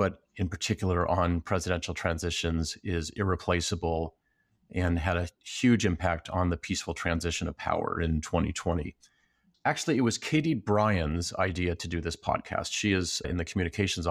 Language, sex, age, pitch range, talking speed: English, male, 40-59, 90-115 Hz, 155 wpm